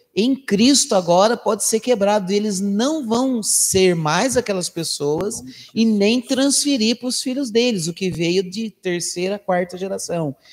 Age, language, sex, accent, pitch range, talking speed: 30-49, Portuguese, male, Brazilian, 145-205 Hz, 155 wpm